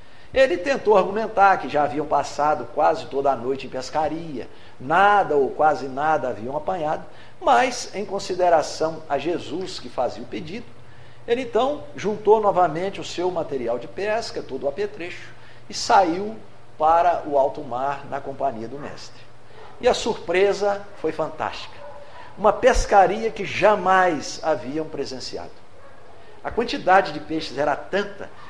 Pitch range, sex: 135-205 Hz, male